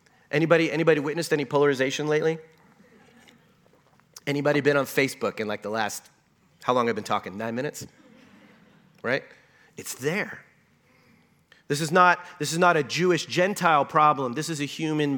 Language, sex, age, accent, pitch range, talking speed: English, male, 30-49, American, 130-175 Hz, 150 wpm